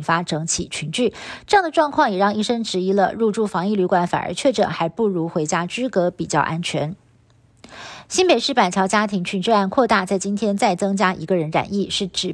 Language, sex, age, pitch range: Chinese, female, 50-69, 180-230 Hz